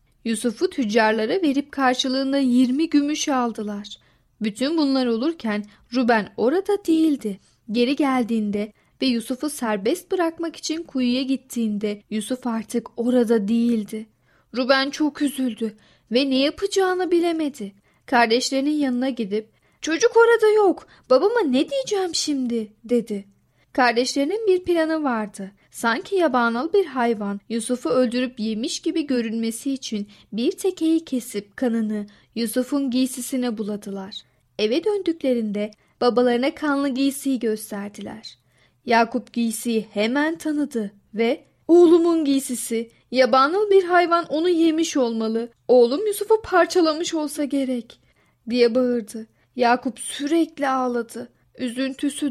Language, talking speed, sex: Turkish, 110 wpm, female